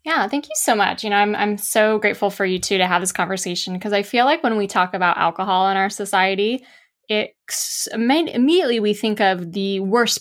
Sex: female